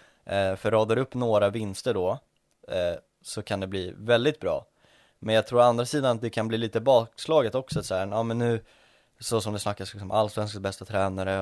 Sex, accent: male, native